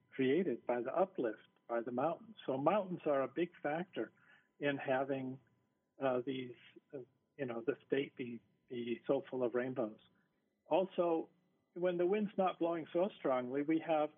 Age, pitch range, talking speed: 50-69, 130-170 Hz, 160 wpm